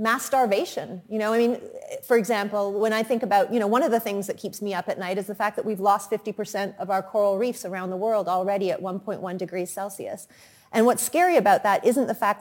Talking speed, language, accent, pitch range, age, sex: 245 wpm, English, American, 200-270 Hz, 30-49, female